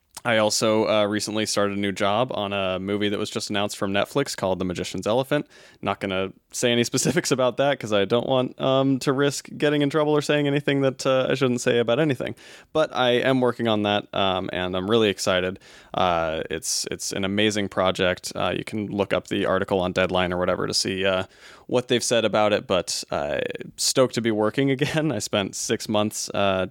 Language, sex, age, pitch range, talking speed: English, male, 20-39, 95-120 Hz, 220 wpm